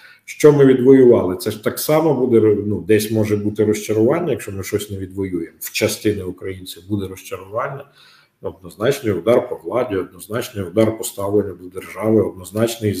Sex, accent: male, native